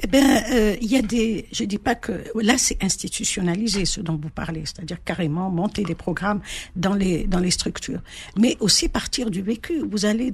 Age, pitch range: 60-79, 175-225 Hz